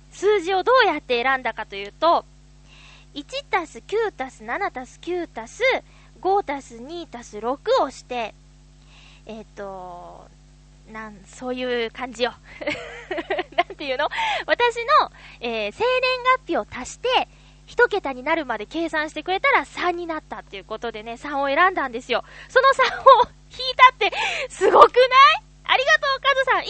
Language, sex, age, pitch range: Japanese, female, 20-39, 235-385 Hz